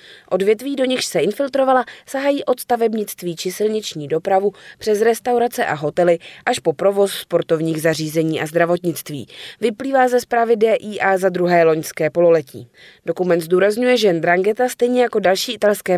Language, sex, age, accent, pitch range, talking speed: Czech, female, 20-39, native, 165-230 Hz, 145 wpm